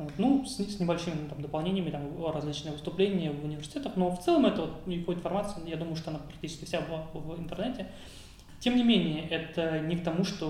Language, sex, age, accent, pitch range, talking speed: Russian, male, 20-39, native, 155-180 Hz, 200 wpm